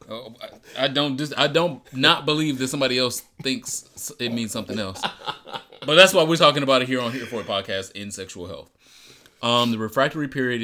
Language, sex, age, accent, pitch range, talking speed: English, male, 30-49, American, 95-120 Hz, 205 wpm